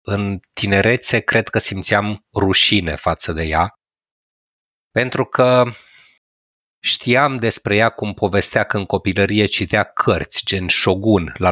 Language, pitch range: Romanian, 95-115 Hz